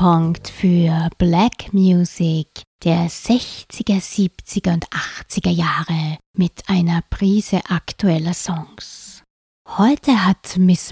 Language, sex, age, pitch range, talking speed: German, female, 20-39, 175-195 Hz, 95 wpm